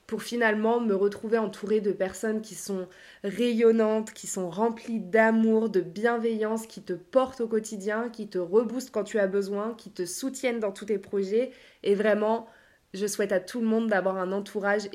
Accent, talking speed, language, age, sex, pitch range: French, 185 wpm, French, 20-39, female, 190-225 Hz